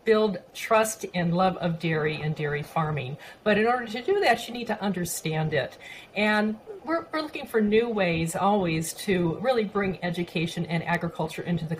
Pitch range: 175-220 Hz